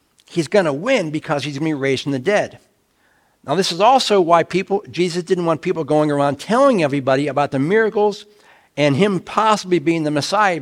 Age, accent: 60-79, American